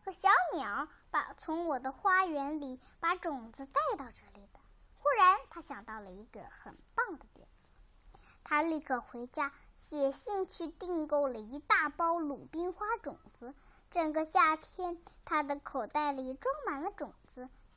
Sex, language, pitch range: male, Chinese, 265-350 Hz